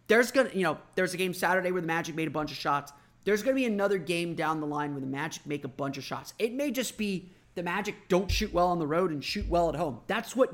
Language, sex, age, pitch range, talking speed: English, male, 30-49, 145-190 Hz, 290 wpm